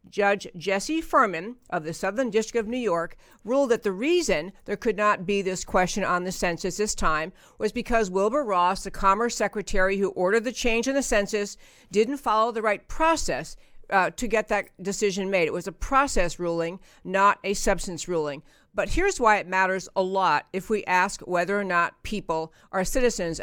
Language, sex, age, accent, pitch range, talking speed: English, female, 50-69, American, 190-235 Hz, 190 wpm